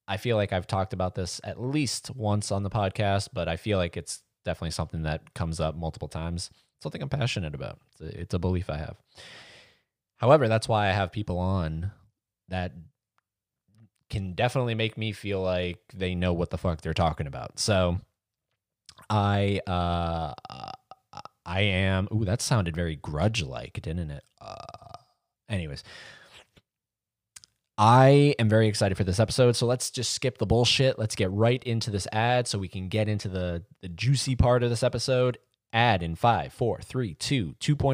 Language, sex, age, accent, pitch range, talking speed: English, male, 20-39, American, 95-125 Hz, 170 wpm